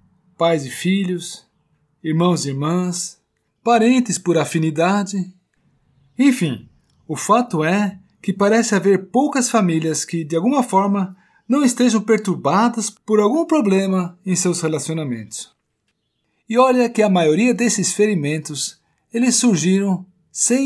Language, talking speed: Portuguese, 115 wpm